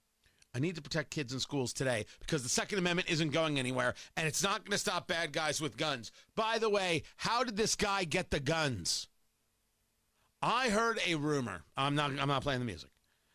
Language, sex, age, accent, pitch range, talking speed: English, male, 40-59, American, 125-200 Hz, 205 wpm